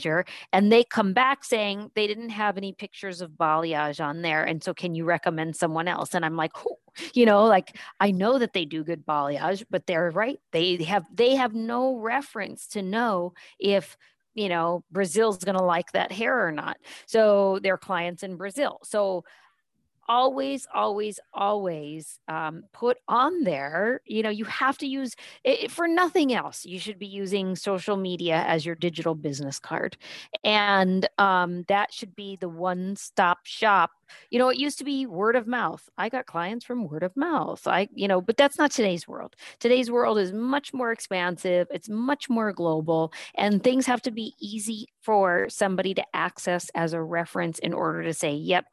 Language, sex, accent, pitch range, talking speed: English, female, American, 175-235 Hz, 185 wpm